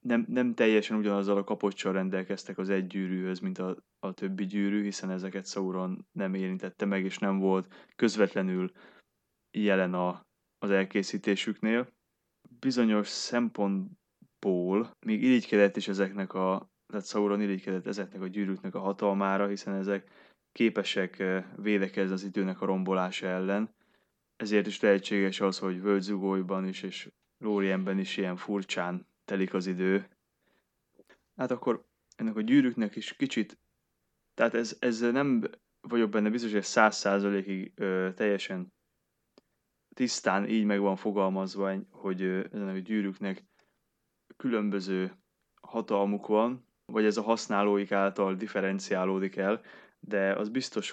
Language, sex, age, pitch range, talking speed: Hungarian, male, 20-39, 95-105 Hz, 125 wpm